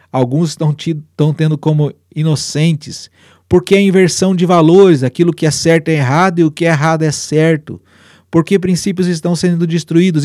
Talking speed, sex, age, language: 175 wpm, male, 40-59, Portuguese